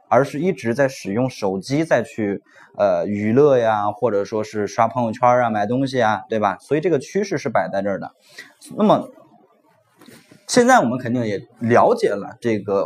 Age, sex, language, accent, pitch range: 20-39, male, Chinese, native, 115-185 Hz